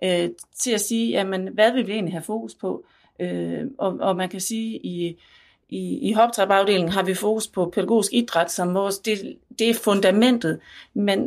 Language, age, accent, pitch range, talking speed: Danish, 40-59, native, 185-225 Hz, 185 wpm